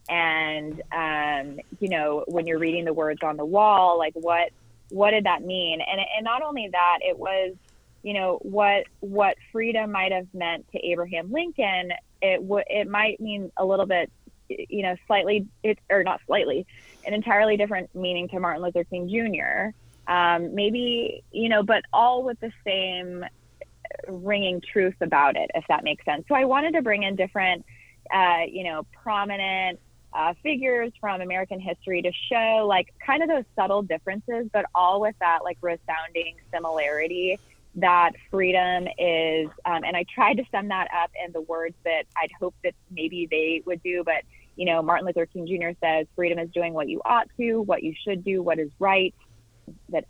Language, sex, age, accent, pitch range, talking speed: English, female, 20-39, American, 170-210 Hz, 185 wpm